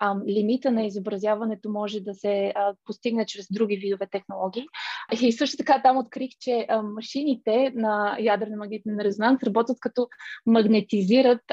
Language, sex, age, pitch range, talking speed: Bulgarian, female, 20-39, 205-235 Hz, 140 wpm